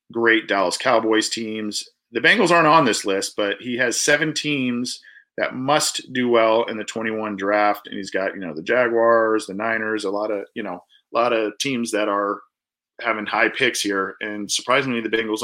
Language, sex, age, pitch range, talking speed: English, male, 40-59, 100-125 Hz, 200 wpm